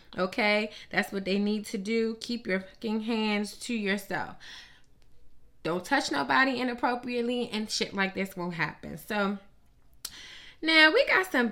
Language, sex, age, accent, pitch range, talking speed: English, female, 20-39, American, 190-255 Hz, 145 wpm